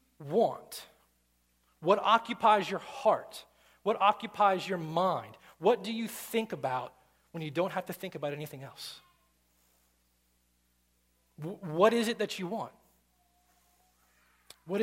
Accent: American